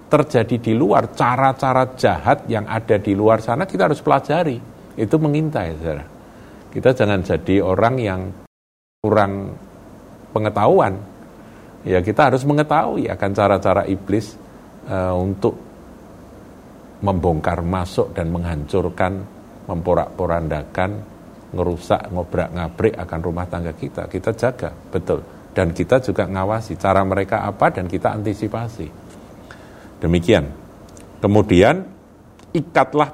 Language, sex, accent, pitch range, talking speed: Indonesian, male, native, 90-110 Hz, 110 wpm